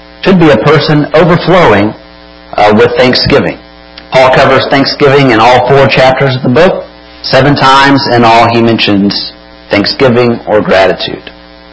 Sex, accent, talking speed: male, American, 140 wpm